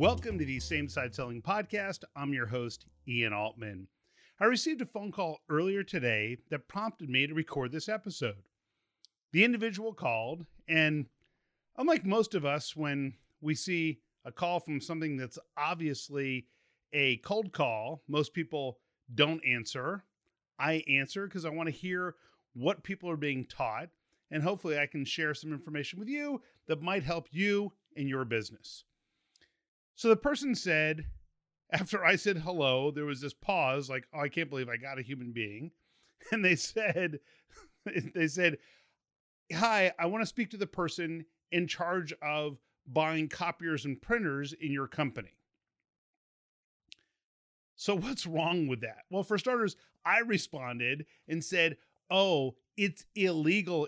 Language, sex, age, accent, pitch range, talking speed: English, male, 40-59, American, 140-185 Hz, 155 wpm